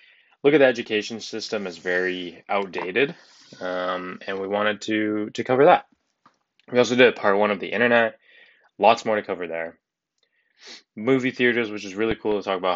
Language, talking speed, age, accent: English, 180 wpm, 20-39, American